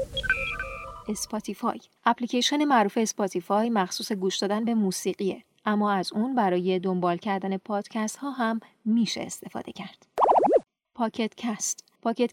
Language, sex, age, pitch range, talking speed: Persian, female, 30-49, 190-230 Hz, 110 wpm